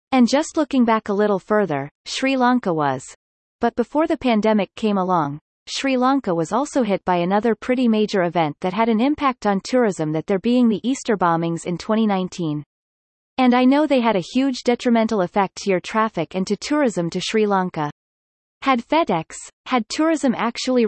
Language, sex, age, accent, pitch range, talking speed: English, female, 30-49, American, 180-255 Hz, 180 wpm